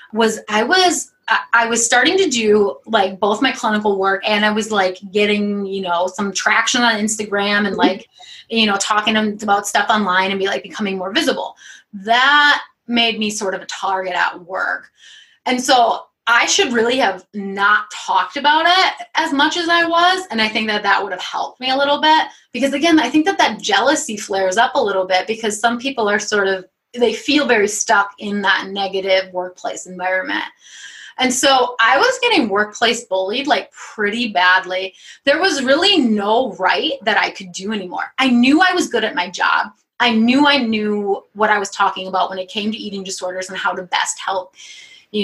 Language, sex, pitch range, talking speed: English, female, 195-255 Hz, 200 wpm